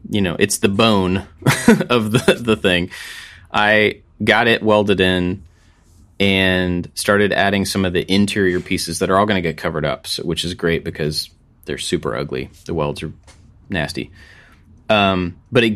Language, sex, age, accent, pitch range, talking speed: English, male, 30-49, American, 85-105 Hz, 170 wpm